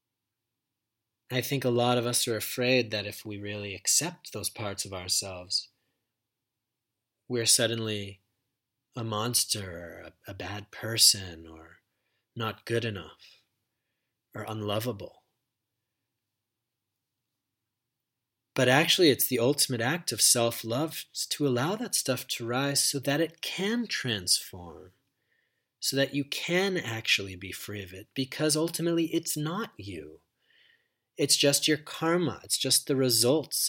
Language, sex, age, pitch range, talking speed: English, male, 30-49, 110-135 Hz, 130 wpm